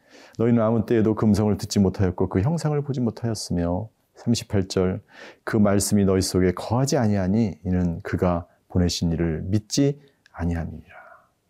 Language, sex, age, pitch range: Korean, male, 40-59, 95-130 Hz